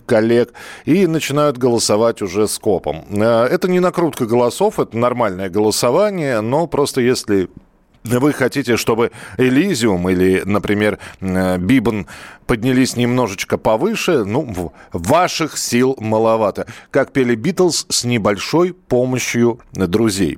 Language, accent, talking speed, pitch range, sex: Russian, native, 110 wpm, 105-145 Hz, male